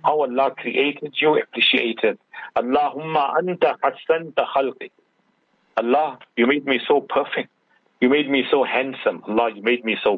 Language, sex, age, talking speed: English, male, 50-69, 140 wpm